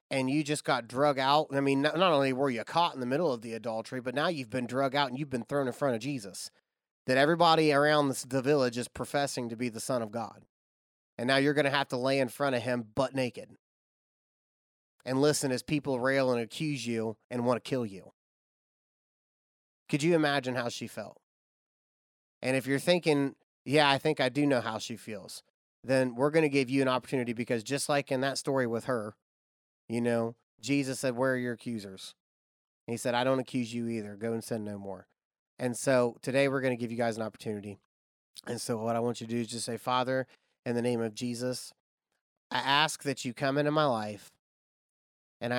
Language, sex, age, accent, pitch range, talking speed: English, male, 30-49, American, 115-140 Hz, 215 wpm